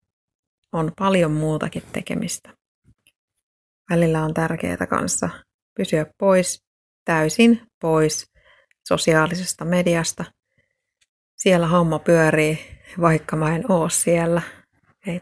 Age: 30-49